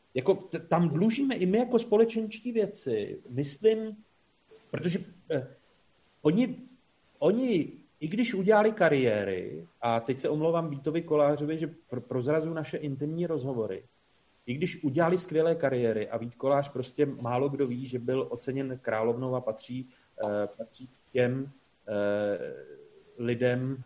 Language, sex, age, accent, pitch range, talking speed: Czech, male, 30-49, native, 120-155 Hz, 135 wpm